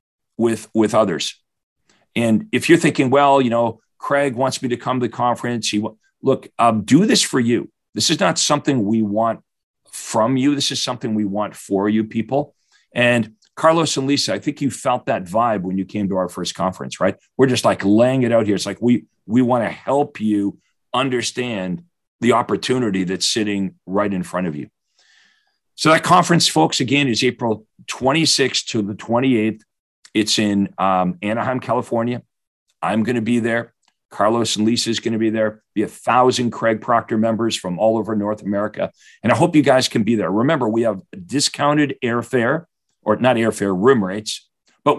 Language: English